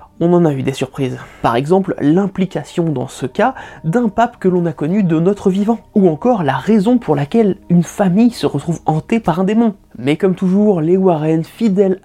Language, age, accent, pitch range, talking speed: French, 20-39, French, 155-215 Hz, 205 wpm